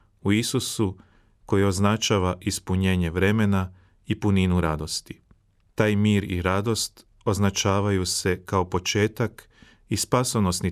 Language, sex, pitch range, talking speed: Croatian, male, 90-110 Hz, 105 wpm